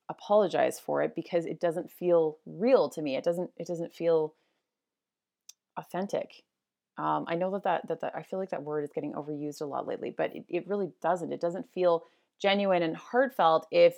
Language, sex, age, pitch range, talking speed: English, female, 30-49, 170-220 Hz, 200 wpm